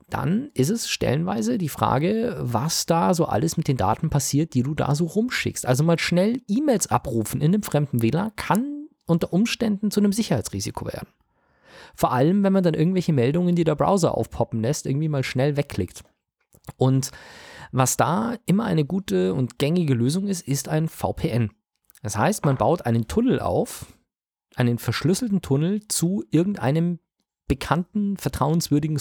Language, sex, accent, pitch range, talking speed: German, male, German, 125-180 Hz, 160 wpm